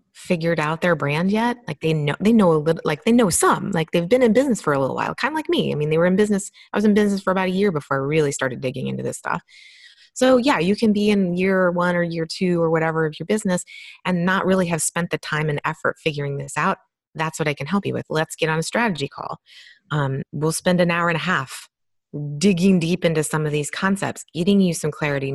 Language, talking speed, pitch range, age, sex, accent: English, 265 wpm, 155-200 Hz, 30-49, female, American